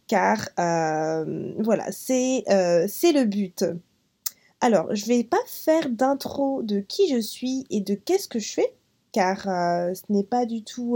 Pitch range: 210-285 Hz